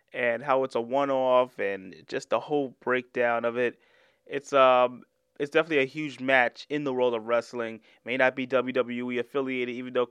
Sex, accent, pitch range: male, American, 120-135 Hz